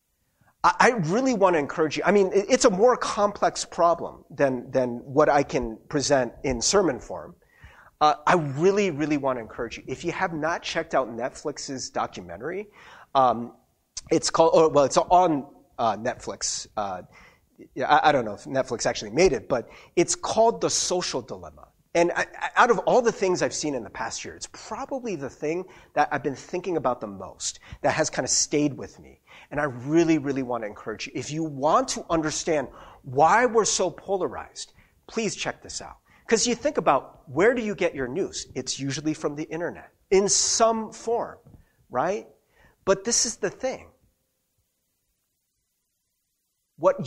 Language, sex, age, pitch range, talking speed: English, male, 30-49, 145-200 Hz, 175 wpm